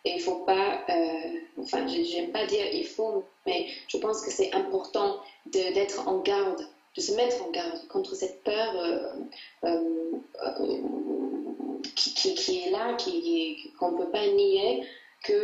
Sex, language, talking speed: female, French, 165 wpm